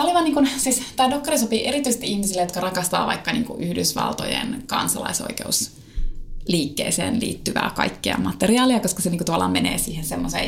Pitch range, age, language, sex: 175-235 Hz, 20-39, Finnish, female